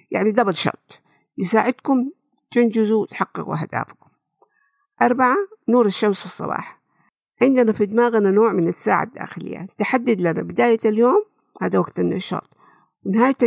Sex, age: female, 50-69